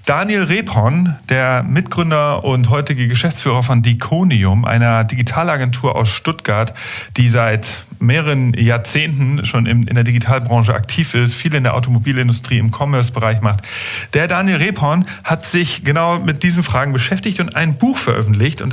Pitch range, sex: 120-160 Hz, male